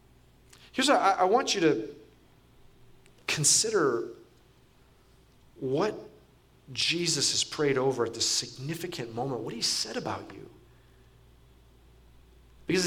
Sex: male